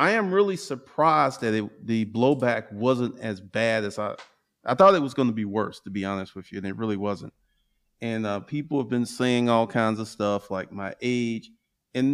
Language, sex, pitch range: English, male, 105-130 Hz